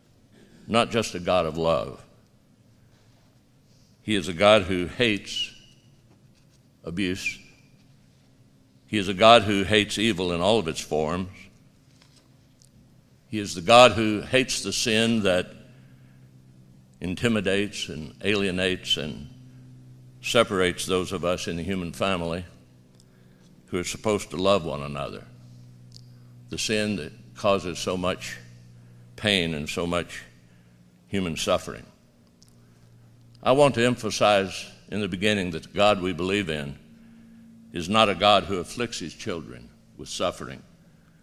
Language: English